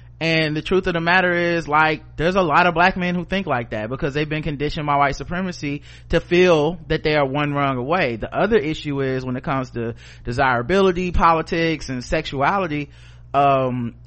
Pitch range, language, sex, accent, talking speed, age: 125-170 Hz, English, male, American, 195 wpm, 30-49